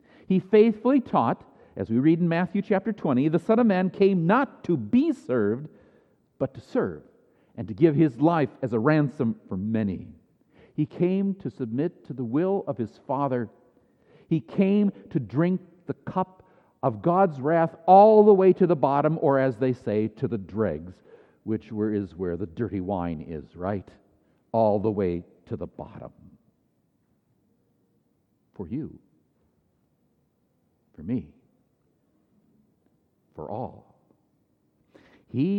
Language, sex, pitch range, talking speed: English, male, 135-220 Hz, 145 wpm